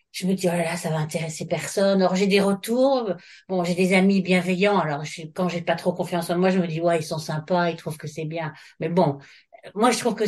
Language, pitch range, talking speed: French, 170-200 Hz, 270 wpm